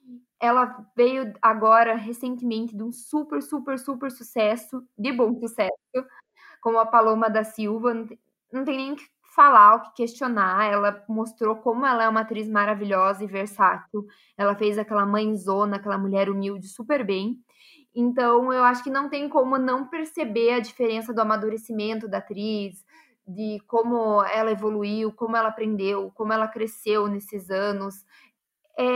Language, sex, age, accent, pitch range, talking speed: Portuguese, female, 20-39, Brazilian, 210-250 Hz, 155 wpm